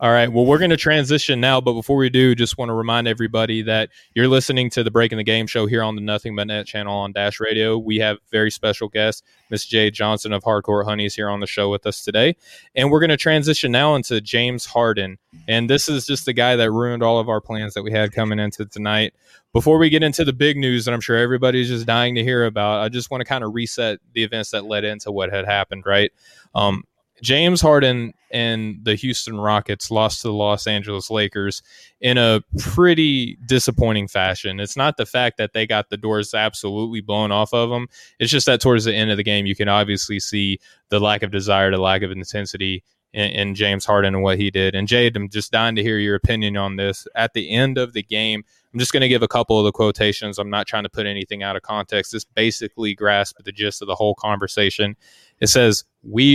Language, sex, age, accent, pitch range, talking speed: English, male, 20-39, American, 105-120 Hz, 235 wpm